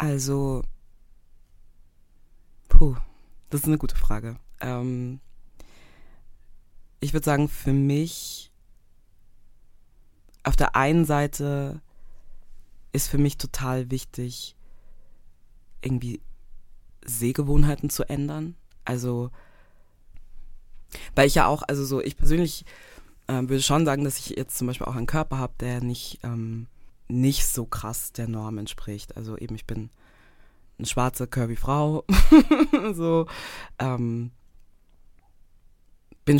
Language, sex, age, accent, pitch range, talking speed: English, female, 20-39, German, 110-140 Hz, 110 wpm